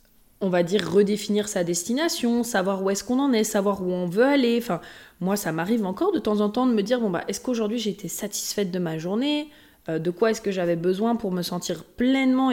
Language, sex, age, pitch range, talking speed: French, female, 20-39, 185-235 Hz, 240 wpm